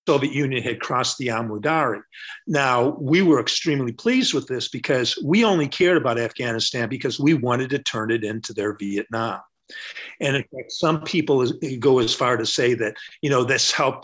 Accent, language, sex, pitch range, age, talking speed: American, English, male, 120-155 Hz, 50-69, 190 wpm